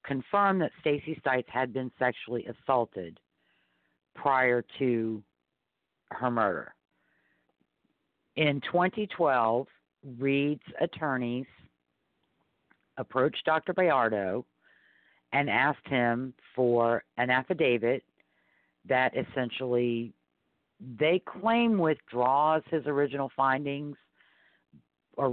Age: 50-69